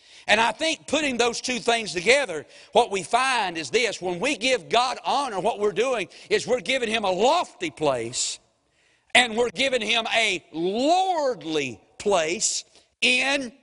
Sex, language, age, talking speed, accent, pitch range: male, English, 50-69, 160 wpm, American, 195-270 Hz